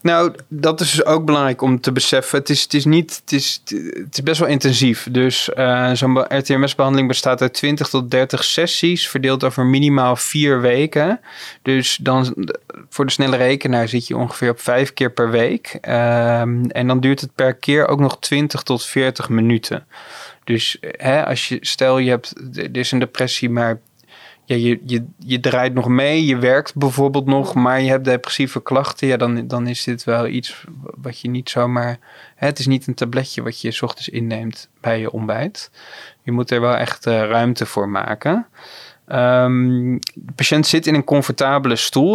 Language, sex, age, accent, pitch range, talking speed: Dutch, male, 20-39, Dutch, 120-140 Hz, 180 wpm